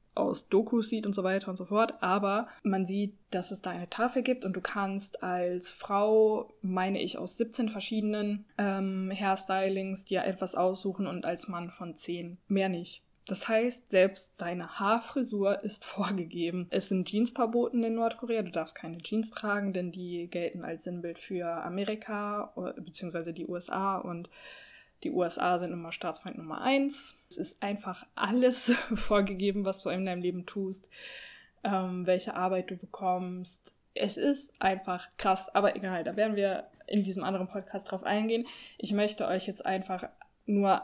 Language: German